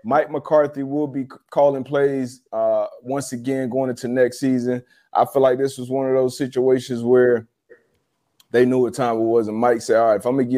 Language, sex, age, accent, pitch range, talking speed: English, male, 20-39, American, 125-145 Hz, 215 wpm